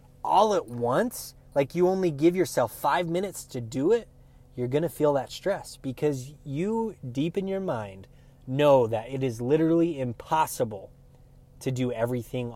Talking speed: 160 wpm